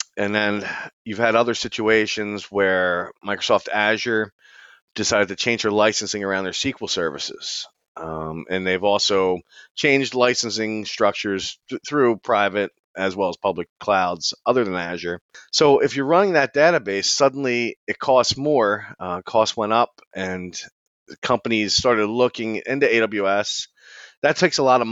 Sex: male